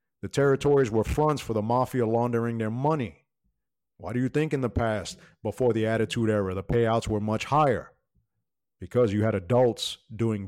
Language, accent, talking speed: English, American, 180 wpm